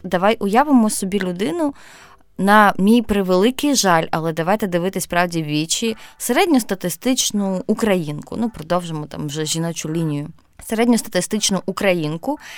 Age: 20-39